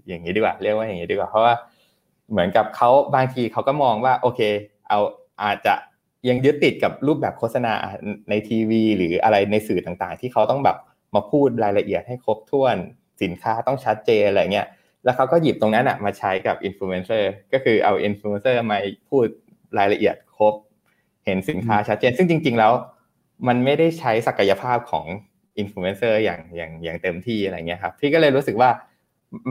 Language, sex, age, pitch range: Thai, male, 20-39, 105-130 Hz